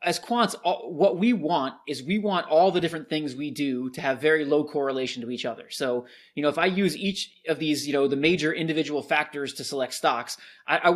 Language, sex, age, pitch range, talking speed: English, male, 20-39, 140-170 Hz, 225 wpm